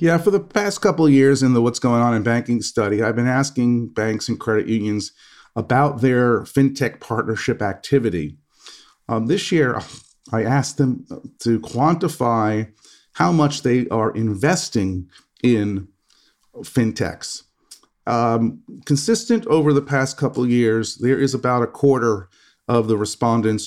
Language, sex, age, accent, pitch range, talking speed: English, male, 40-59, American, 110-145 Hz, 145 wpm